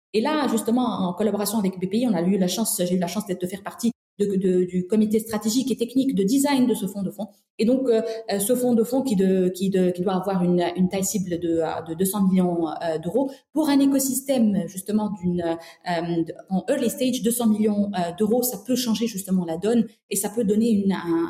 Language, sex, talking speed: French, female, 225 wpm